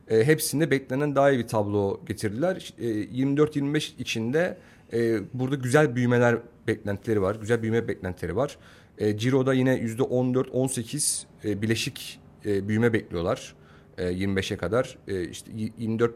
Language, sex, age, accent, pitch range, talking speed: Turkish, male, 40-59, native, 105-125 Hz, 135 wpm